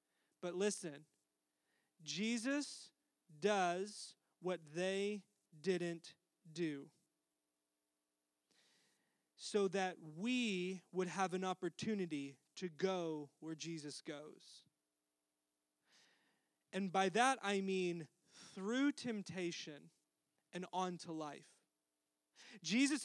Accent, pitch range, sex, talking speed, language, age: American, 180-275 Hz, male, 80 wpm, English, 30-49